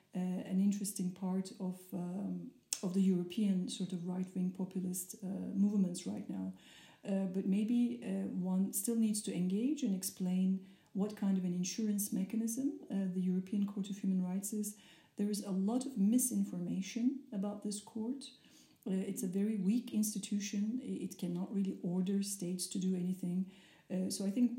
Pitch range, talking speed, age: 185-210 Hz, 170 wpm, 50-69